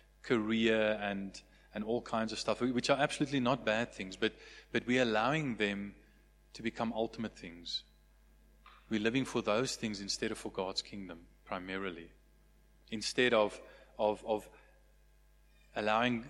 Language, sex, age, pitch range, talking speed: English, male, 30-49, 100-125 Hz, 140 wpm